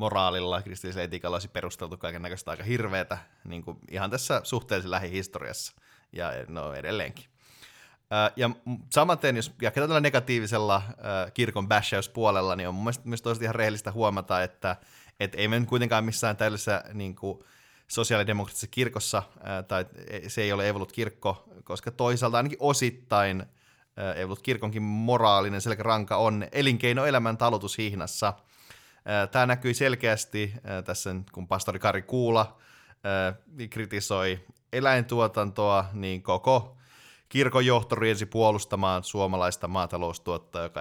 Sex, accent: male, native